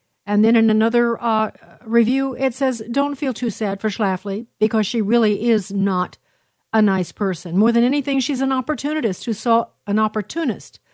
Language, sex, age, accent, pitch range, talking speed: English, female, 50-69, American, 195-235 Hz, 175 wpm